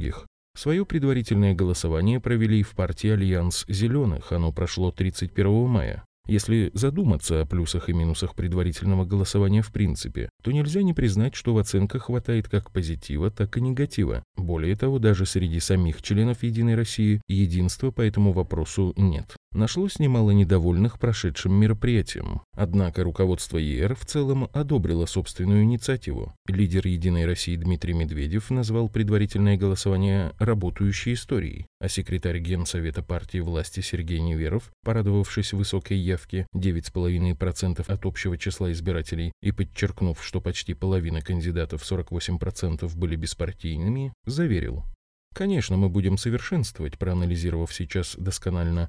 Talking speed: 130 wpm